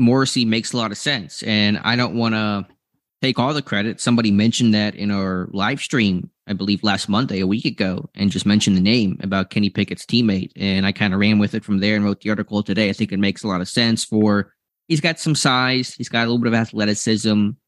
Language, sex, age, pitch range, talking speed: English, male, 20-39, 105-115 Hz, 245 wpm